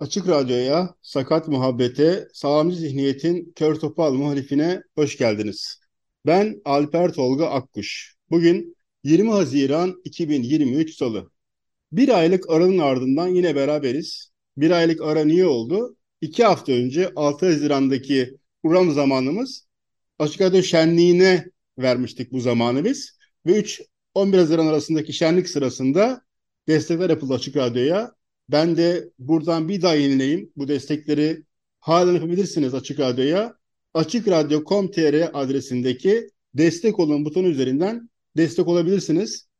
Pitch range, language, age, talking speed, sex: 150-185 Hz, Turkish, 50-69, 115 wpm, male